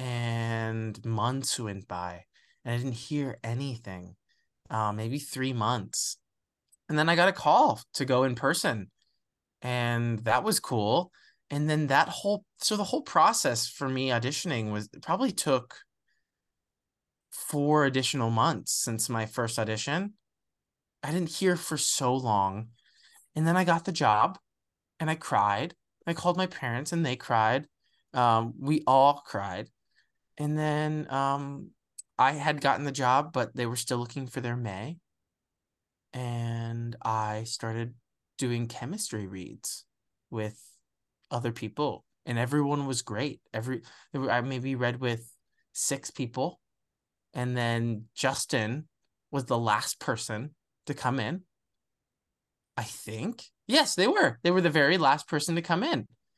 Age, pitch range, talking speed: 20-39, 115-150 Hz, 145 wpm